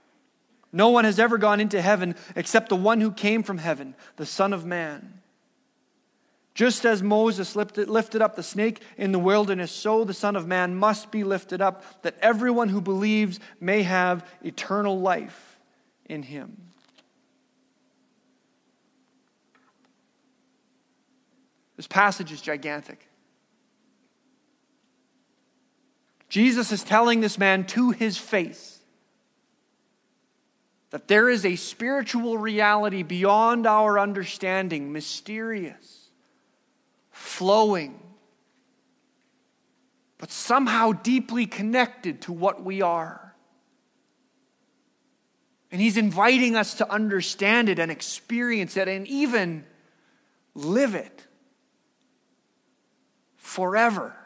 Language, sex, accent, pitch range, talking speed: English, male, American, 190-245 Hz, 105 wpm